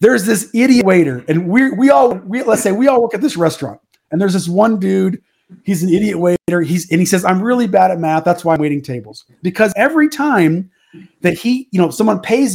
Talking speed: 235 wpm